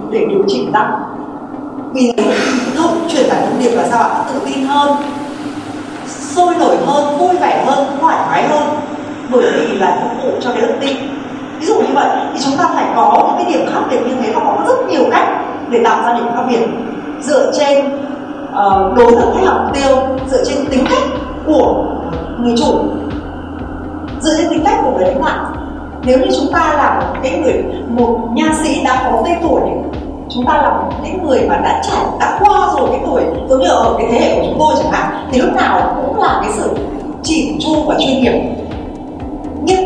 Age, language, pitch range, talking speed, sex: 20-39, Vietnamese, 265-370 Hz, 205 wpm, female